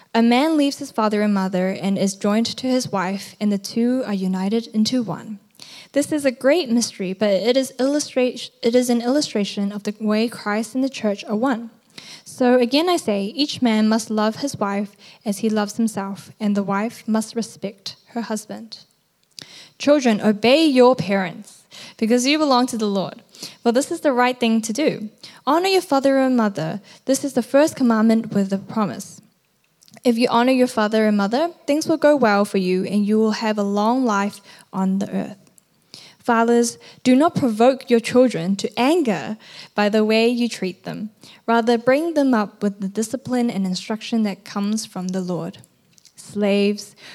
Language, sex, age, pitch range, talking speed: English, female, 10-29, 200-250 Hz, 185 wpm